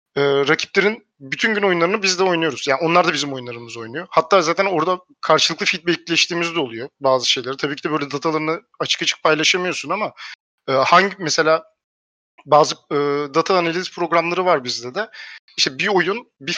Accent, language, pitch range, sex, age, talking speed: native, Turkish, 155-190 Hz, male, 40-59, 165 wpm